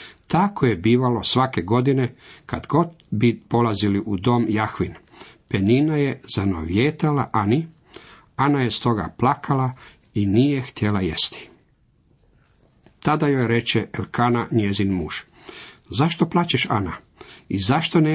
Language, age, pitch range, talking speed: Croatian, 50-69, 105-140 Hz, 120 wpm